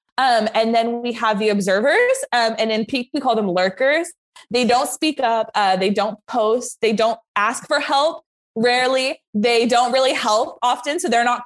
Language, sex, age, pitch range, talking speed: English, female, 20-39, 200-260 Hz, 195 wpm